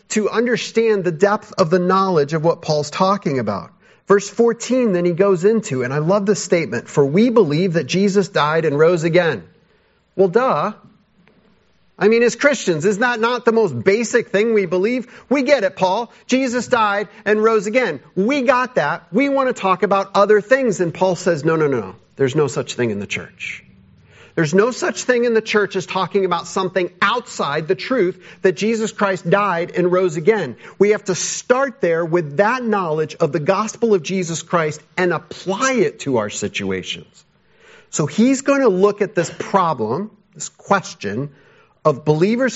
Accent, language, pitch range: American, English, 170-215 Hz